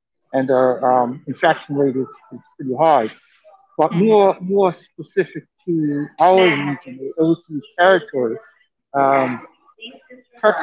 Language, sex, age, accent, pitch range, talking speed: English, male, 60-79, American, 135-165 Hz, 115 wpm